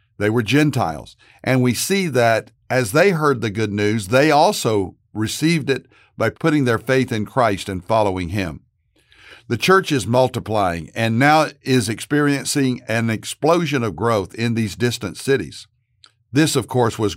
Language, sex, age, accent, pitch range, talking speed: English, male, 60-79, American, 110-140 Hz, 160 wpm